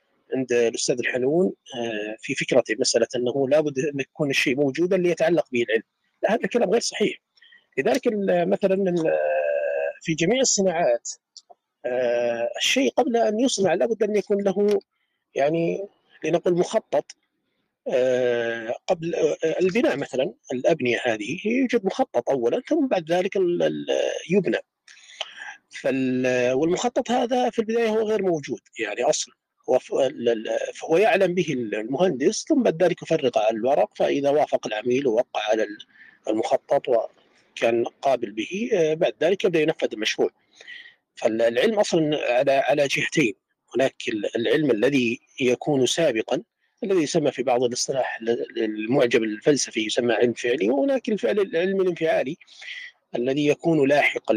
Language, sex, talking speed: Arabic, male, 120 wpm